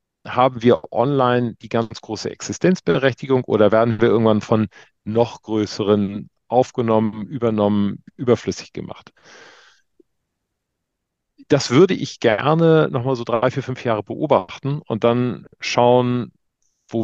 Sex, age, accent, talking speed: male, 40-59, German, 120 wpm